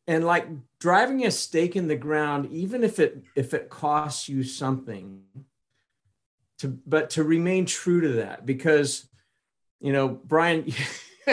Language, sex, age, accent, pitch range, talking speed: English, male, 50-69, American, 125-155 Hz, 145 wpm